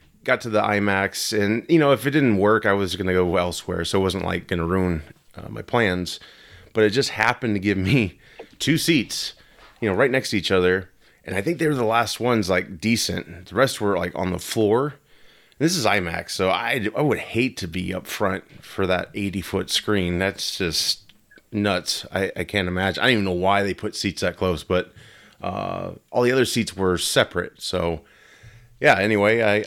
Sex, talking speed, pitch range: male, 210 wpm, 90-115 Hz